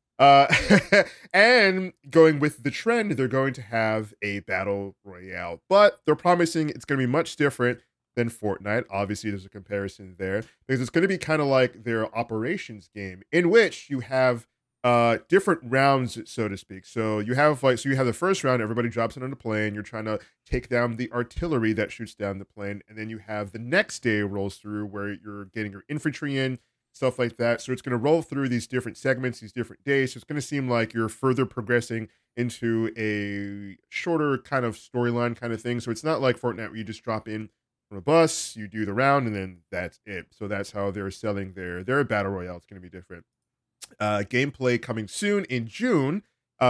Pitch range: 105-135 Hz